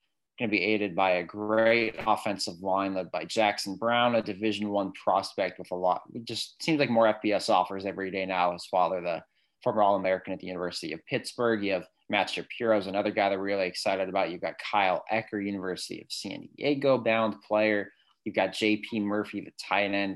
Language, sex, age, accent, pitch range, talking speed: English, male, 20-39, American, 95-110 Hz, 200 wpm